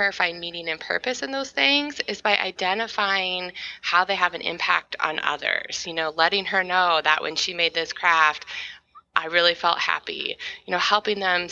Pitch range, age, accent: 160-200 Hz, 20-39, American